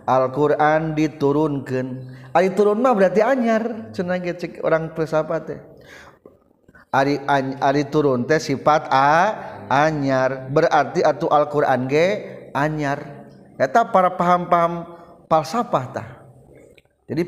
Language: Indonesian